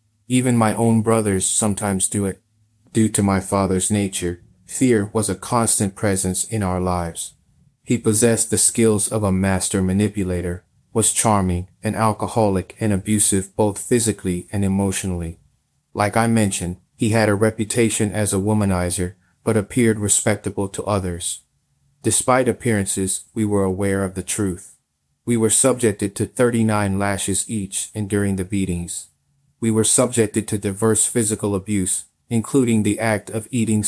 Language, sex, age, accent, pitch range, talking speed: English, male, 30-49, American, 95-115 Hz, 150 wpm